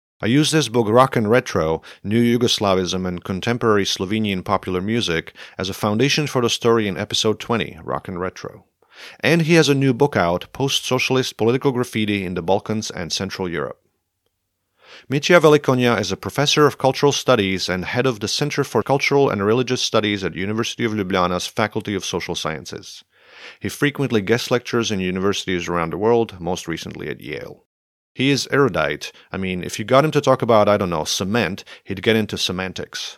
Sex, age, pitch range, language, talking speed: male, 40-59, 95-130 Hz, English, 185 wpm